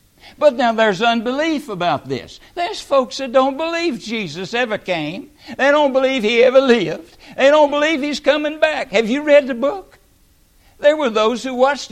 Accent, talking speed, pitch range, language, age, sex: American, 180 wpm, 175-270 Hz, English, 60-79, male